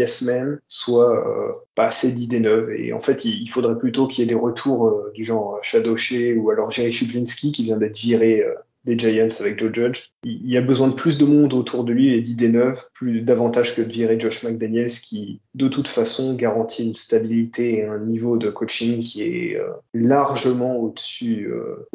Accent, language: French, French